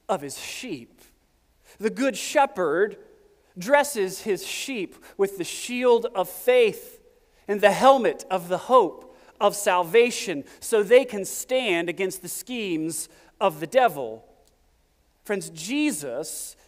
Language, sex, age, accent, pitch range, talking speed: English, male, 40-59, American, 185-275 Hz, 120 wpm